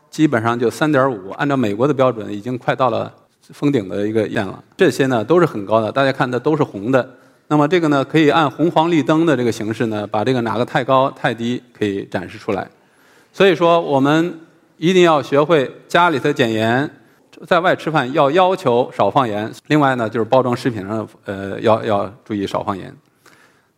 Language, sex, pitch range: Chinese, male, 115-160 Hz